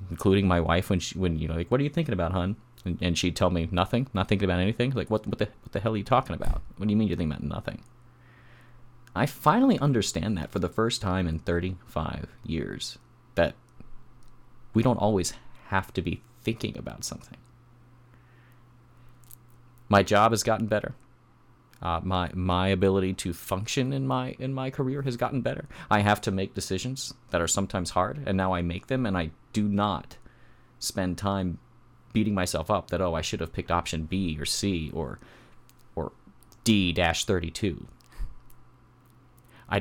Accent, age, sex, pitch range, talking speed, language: American, 30-49, male, 90-120 Hz, 180 wpm, English